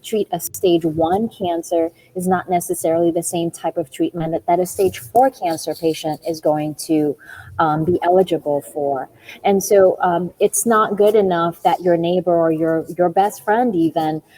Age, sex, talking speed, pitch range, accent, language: 30-49, female, 180 wpm, 160-195 Hz, American, English